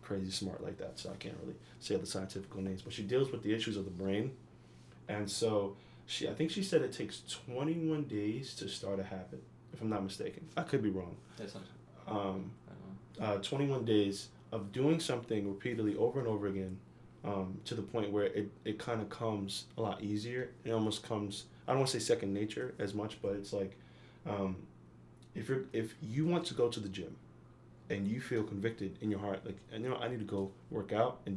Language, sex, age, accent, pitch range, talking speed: English, male, 20-39, American, 100-120 Hz, 210 wpm